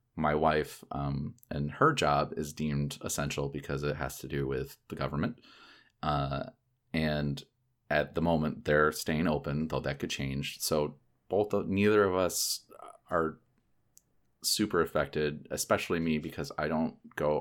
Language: English